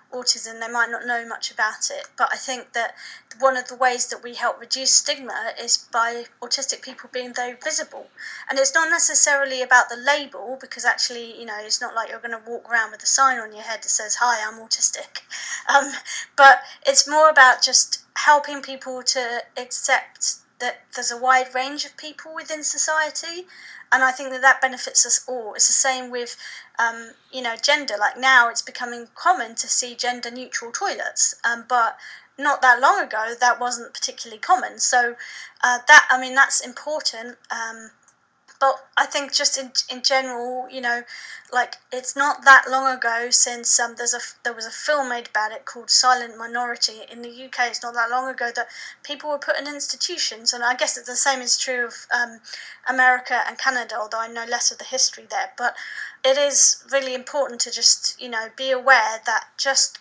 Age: 30-49